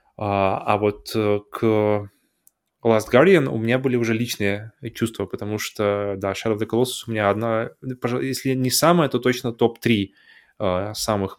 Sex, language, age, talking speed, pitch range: male, Russian, 20-39, 150 wpm, 105-120 Hz